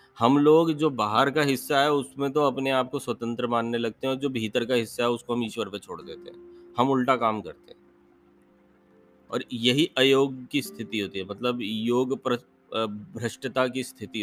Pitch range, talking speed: 105-130 Hz, 195 wpm